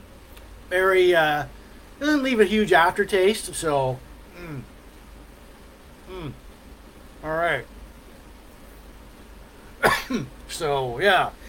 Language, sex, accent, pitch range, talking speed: English, male, American, 135-180 Hz, 75 wpm